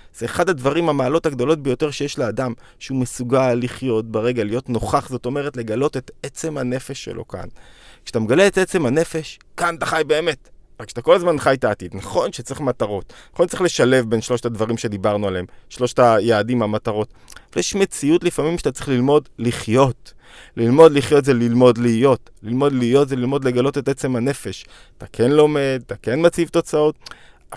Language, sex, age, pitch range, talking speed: Hebrew, male, 20-39, 115-150 Hz, 170 wpm